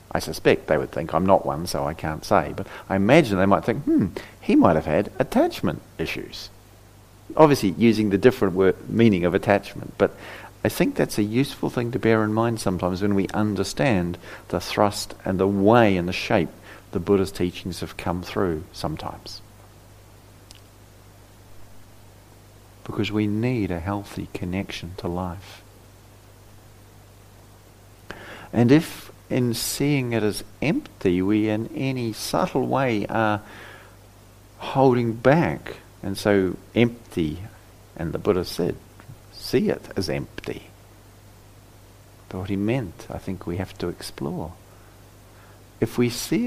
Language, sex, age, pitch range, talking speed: English, male, 50-69, 100-110 Hz, 140 wpm